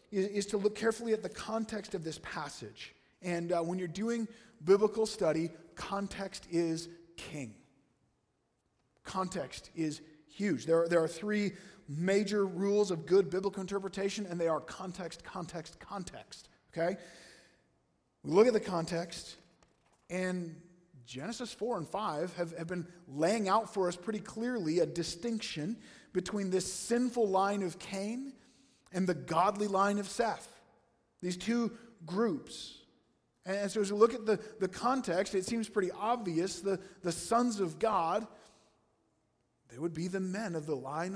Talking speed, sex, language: 150 wpm, male, English